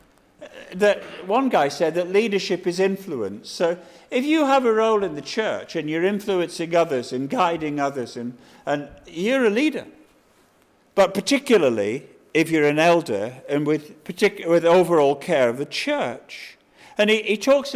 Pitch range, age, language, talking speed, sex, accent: 160-210 Hz, 50-69, English, 160 wpm, male, British